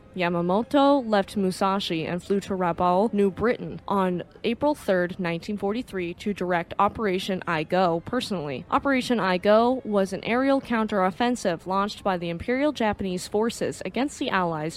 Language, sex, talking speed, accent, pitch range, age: English, female, 140 wpm, American, 175-220 Hz, 20-39